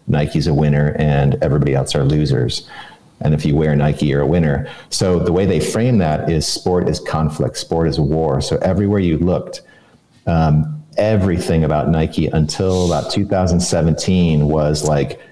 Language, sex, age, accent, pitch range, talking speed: English, male, 40-59, American, 80-95 Hz, 165 wpm